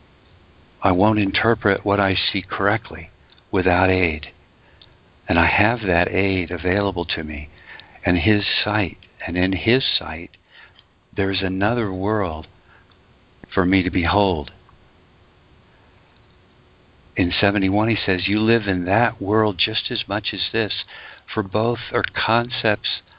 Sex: male